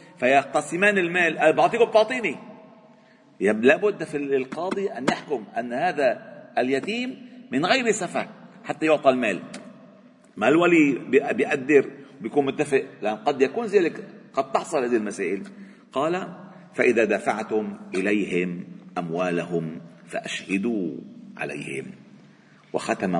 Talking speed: 100 wpm